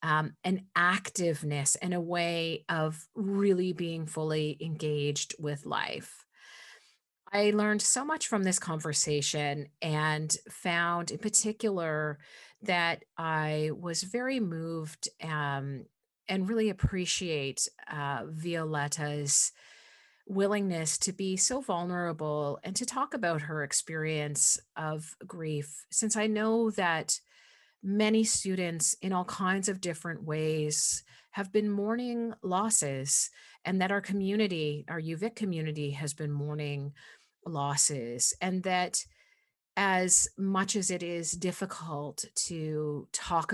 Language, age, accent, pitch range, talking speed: English, 40-59, American, 150-195 Hz, 115 wpm